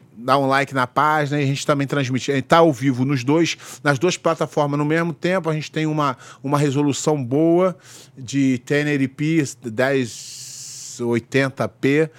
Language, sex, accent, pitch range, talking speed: Portuguese, male, Brazilian, 120-145 Hz, 160 wpm